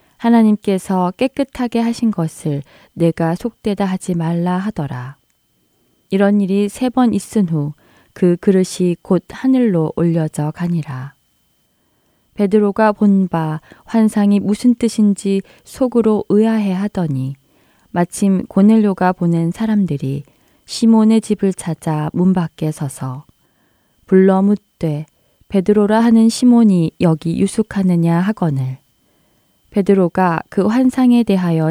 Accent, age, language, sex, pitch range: native, 20-39, Korean, female, 165-210 Hz